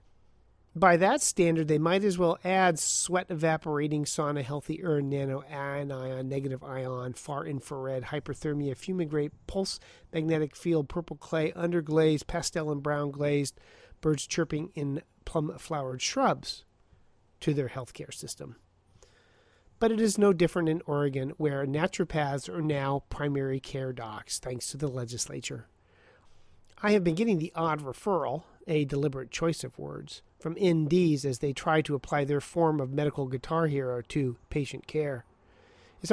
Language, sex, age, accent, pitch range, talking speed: English, male, 40-59, American, 135-165 Hz, 150 wpm